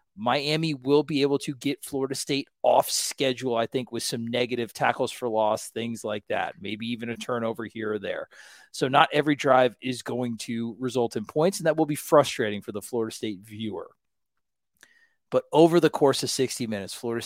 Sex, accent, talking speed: male, American, 195 wpm